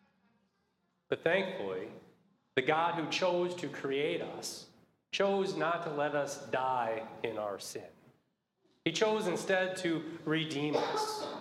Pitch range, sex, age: 140-170 Hz, male, 30-49